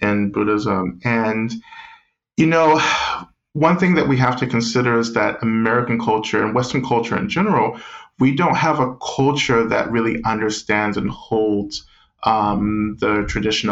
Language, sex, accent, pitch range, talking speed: English, male, American, 110-125 Hz, 150 wpm